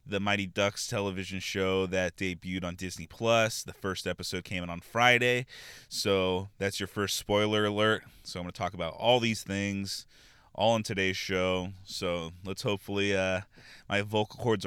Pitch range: 95-110 Hz